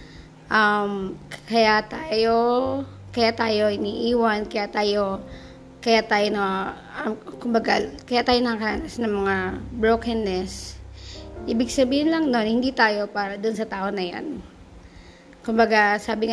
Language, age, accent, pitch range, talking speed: Filipino, 20-39, native, 190-235 Hz, 130 wpm